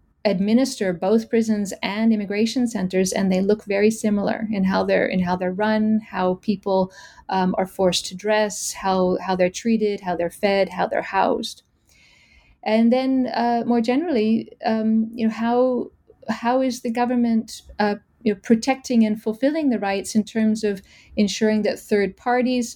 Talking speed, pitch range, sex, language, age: 165 wpm, 195-230 Hz, female, English, 30-49